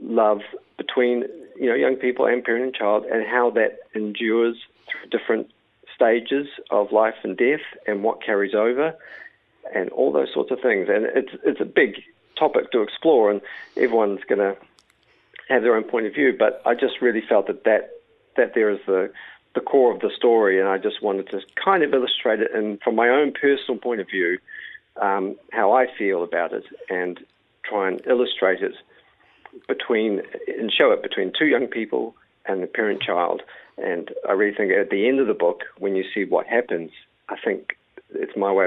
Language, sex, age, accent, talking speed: English, male, 50-69, Australian, 195 wpm